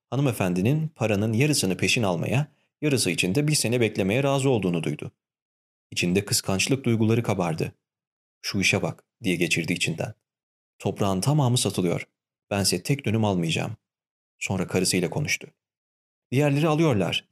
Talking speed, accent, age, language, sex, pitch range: 120 wpm, native, 40-59, Turkish, male, 95-130 Hz